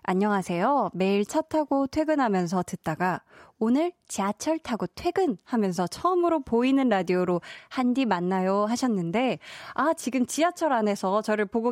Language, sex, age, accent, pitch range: Korean, female, 20-39, native, 190-275 Hz